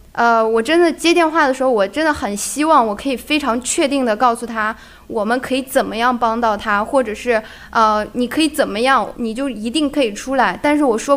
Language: Chinese